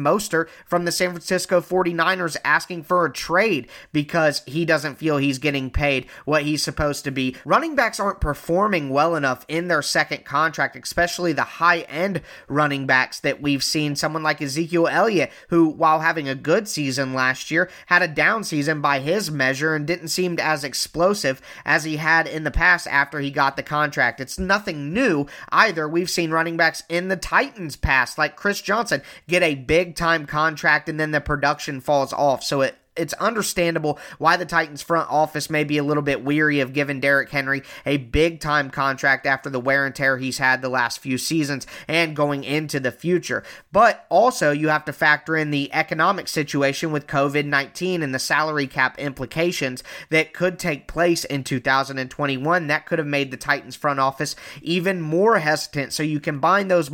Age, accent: 30-49, American